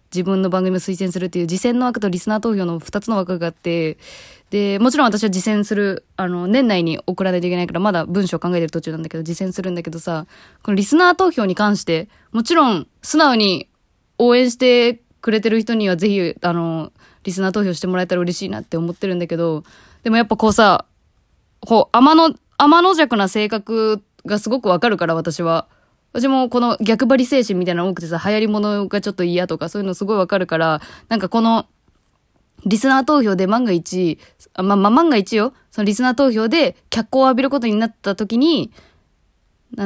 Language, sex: Japanese, female